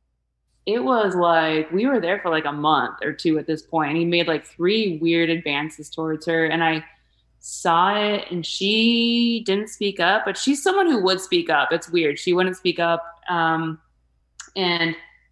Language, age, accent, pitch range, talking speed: English, 20-39, American, 160-225 Hz, 190 wpm